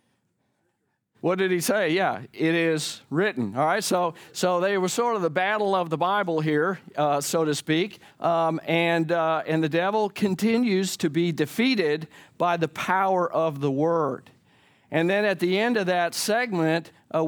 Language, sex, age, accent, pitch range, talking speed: English, male, 50-69, American, 160-200 Hz, 175 wpm